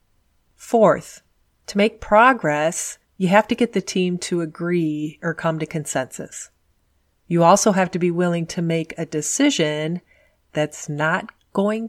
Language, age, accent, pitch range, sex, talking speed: English, 40-59, American, 155-205 Hz, female, 145 wpm